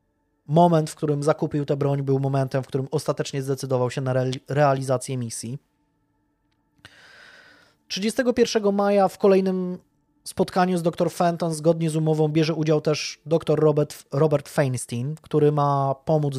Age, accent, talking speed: 20-39, native, 135 wpm